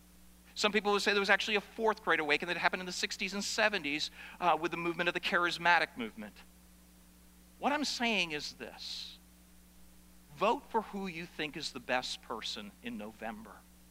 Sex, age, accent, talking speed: male, 50-69, American, 180 wpm